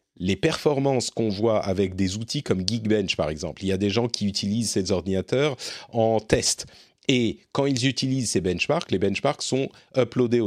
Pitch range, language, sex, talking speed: 95-130 Hz, French, male, 185 wpm